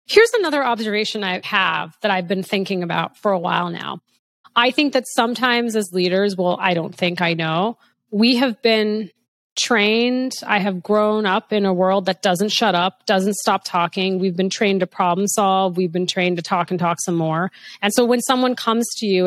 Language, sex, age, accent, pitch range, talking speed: English, female, 30-49, American, 175-230 Hz, 205 wpm